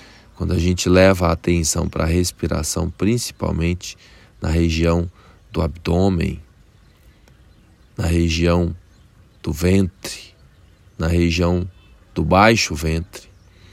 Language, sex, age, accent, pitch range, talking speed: Portuguese, male, 20-39, Brazilian, 85-100 Hz, 100 wpm